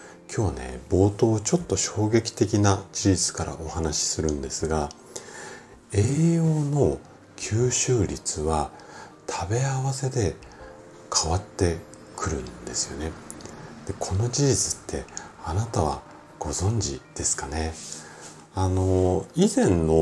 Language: Japanese